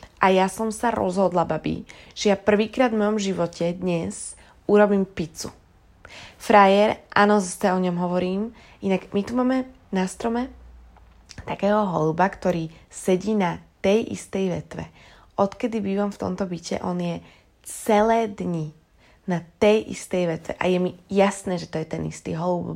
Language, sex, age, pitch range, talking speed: Slovak, female, 20-39, 175-210 Hz, 155 wpm